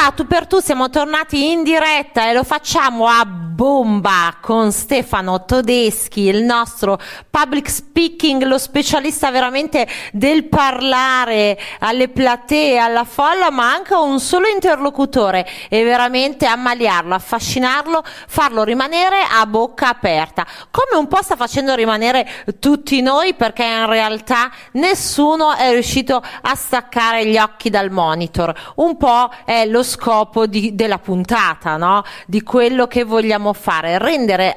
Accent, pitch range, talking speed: native, 215-290 Hz, 135 wpm